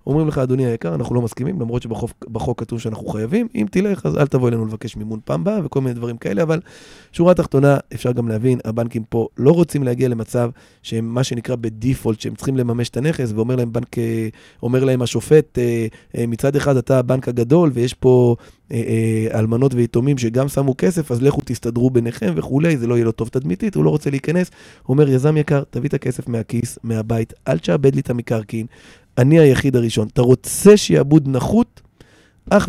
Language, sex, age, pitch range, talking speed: Hebrew, male, 20-39, 115-145 Hz, 165 wpm